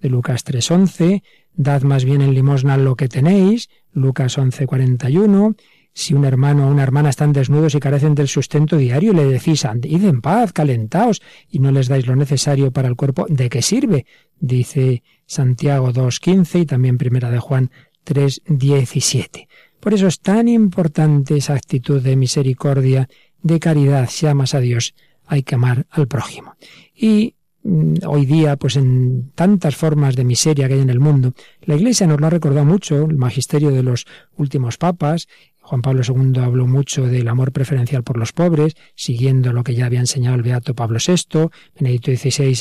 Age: 40-59